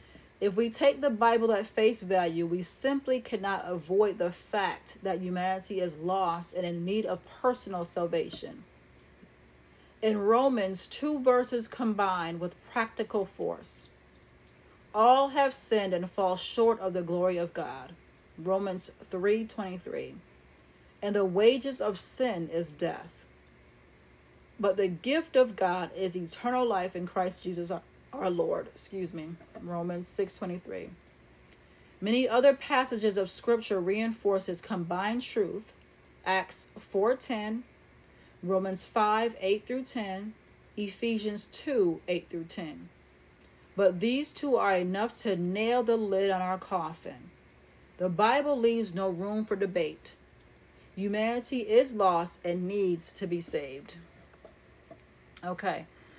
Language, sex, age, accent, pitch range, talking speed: English, female, 40-59, American, 175-225 Hz, 130 wpm